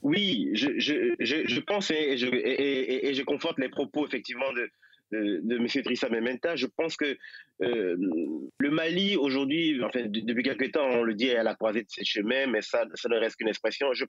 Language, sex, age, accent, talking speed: French, male, 30-49, French, 215 wpm